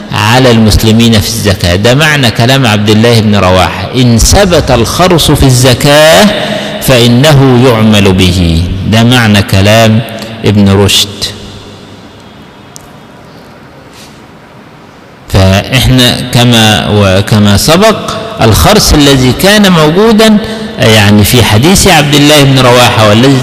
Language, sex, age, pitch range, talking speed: Arabic, male, 50-69, 100-140 Hz, 100 wpm